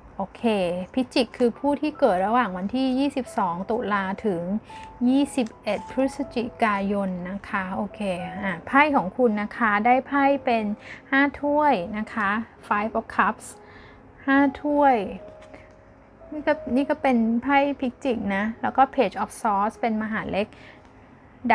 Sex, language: female, Thai